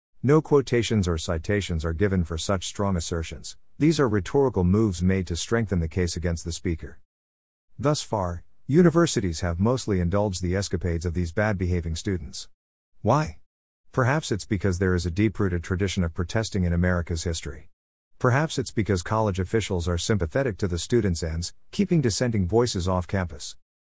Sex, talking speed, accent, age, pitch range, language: male, 160 wpm, American, 50-69, 85-115 Hz, English